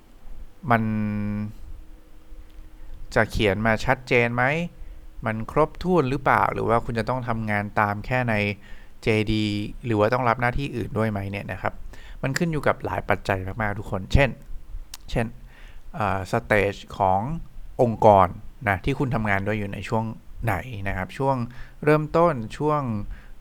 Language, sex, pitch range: English, male, 100-125 Hz